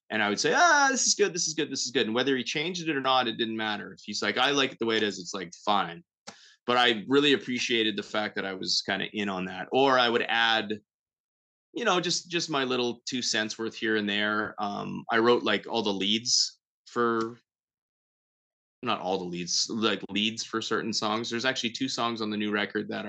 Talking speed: 240 wpm